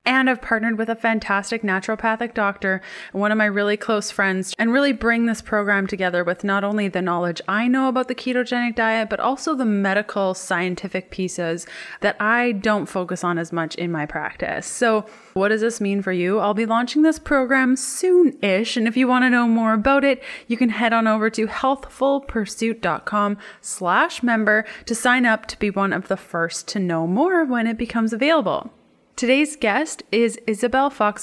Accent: American